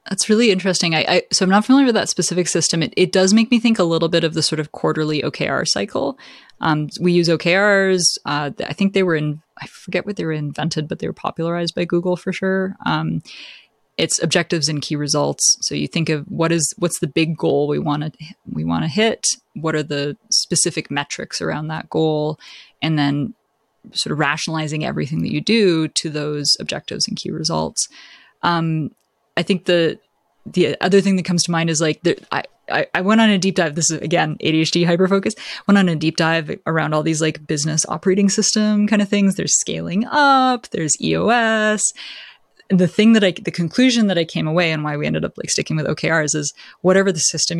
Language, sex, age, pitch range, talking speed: English, female, 20-39, 155-195 Hz, 215 wpm